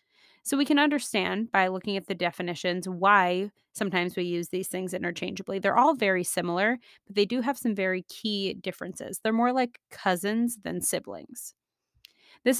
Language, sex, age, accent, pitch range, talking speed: English, female, 30-49, American, 185-240 Hz, 165 wpm